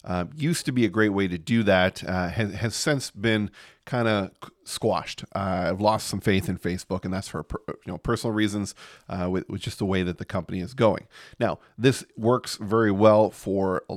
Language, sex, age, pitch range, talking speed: English, male, 30-49, 95-120 Hz, 215 wpm